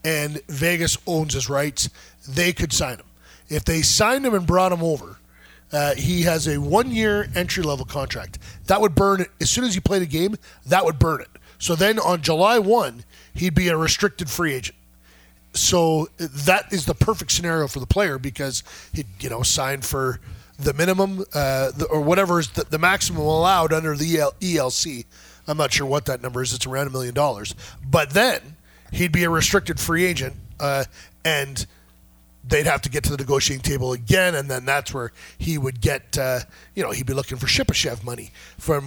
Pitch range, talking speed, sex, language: 125-170 Hz, 190 wpm, male, English